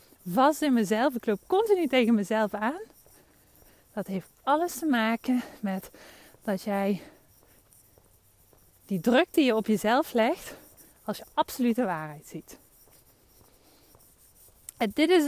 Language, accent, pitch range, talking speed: Dutch, Dutch, 205-250 Hz, 125 wpm